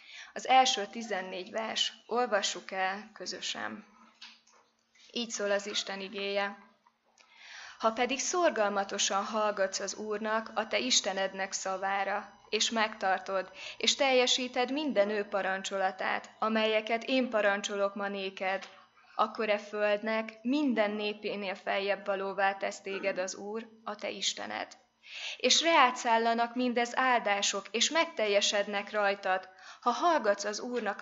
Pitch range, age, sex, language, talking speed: 195-225 Hz, 20-39, female, Hungarian, 115 wpm